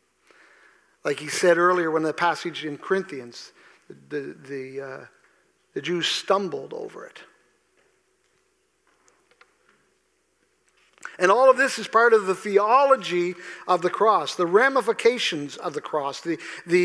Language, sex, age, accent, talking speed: English, male, 50-69, American, 130 wpm